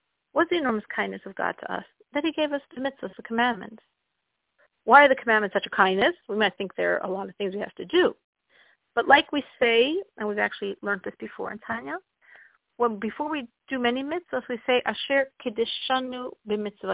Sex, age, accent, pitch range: female, 50-69, American, 215-275 Hz